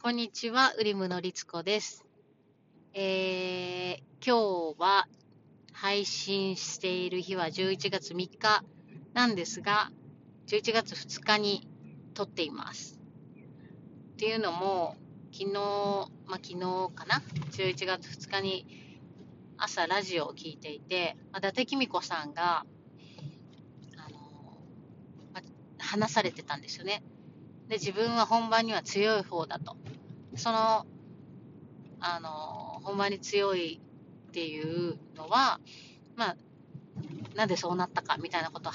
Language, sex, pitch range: Japanese, female, 165-205 Hz